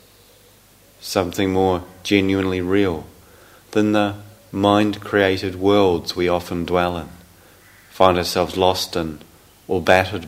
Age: 40-59